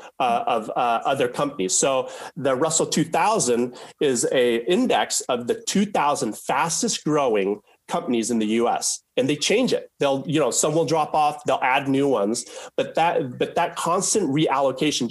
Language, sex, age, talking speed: English, male, 30-49, 165 wpm